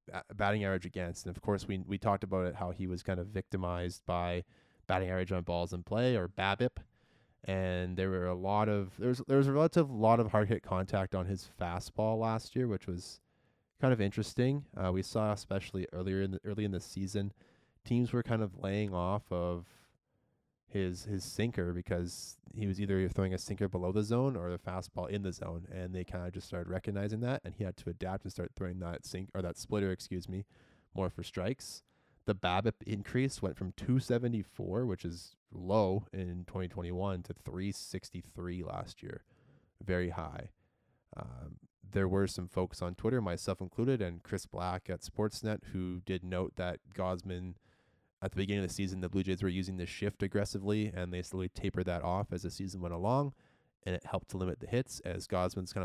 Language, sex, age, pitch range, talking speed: English, male, 20-39, 90-105 Hz, 200 wpm